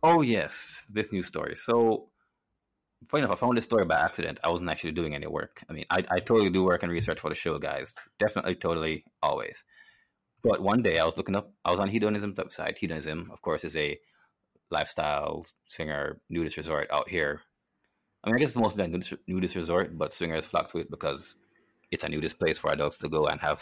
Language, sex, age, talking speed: English, male, 30-49, 215 wpm